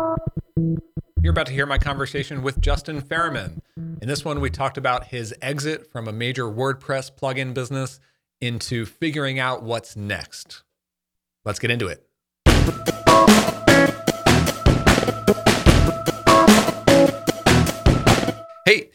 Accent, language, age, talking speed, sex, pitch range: American, English, 30-49, 105 wpm, male, 95-135 Hz